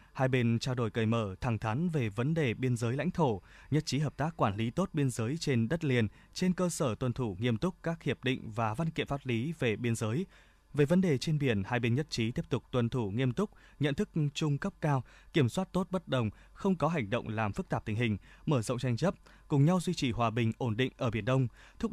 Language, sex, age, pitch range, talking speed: Vietnamese, male, 20-39, 115-155 Hz, 260 wpm